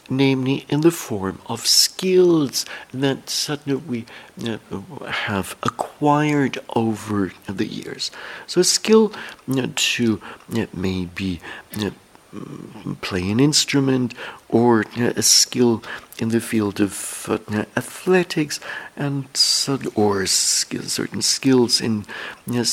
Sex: male